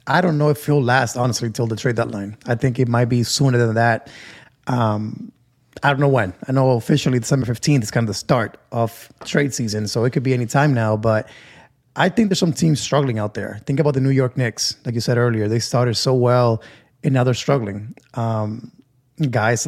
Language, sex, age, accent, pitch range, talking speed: English, male, 20-39, American, 115-145 Hz, 225 wpm